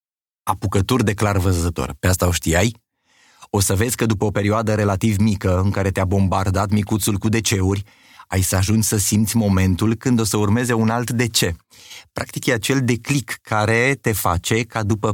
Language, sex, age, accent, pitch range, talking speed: Romanian, male, 30-49, native, 95-115 Hz, 185 wpm